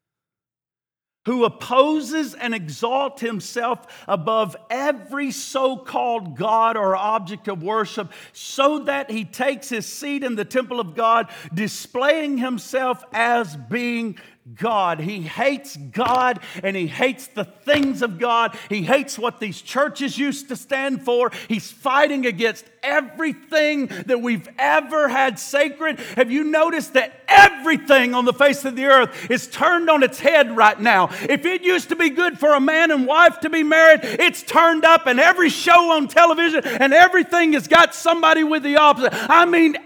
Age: 50-69